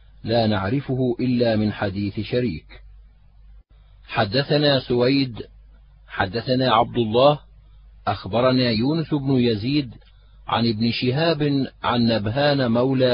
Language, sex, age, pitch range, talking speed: Arabic, male, 50-69, 115-140 Hz, 95 wpm